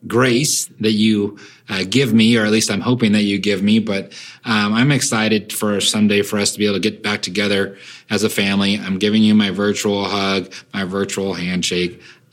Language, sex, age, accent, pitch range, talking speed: English, male, 30-49, American, 100-120 Hz, 205 wpm